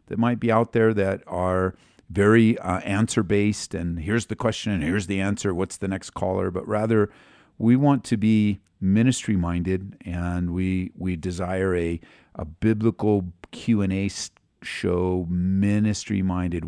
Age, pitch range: 50-69, 90-110 Hz